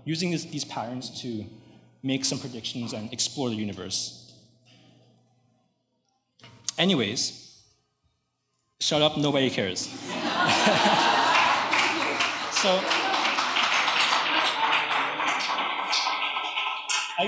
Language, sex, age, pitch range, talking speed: English, male, 20-39, 125-175 Hz, 65 wpm